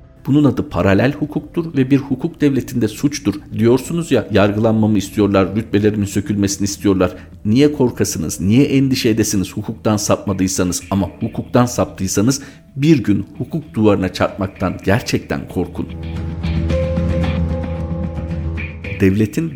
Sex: male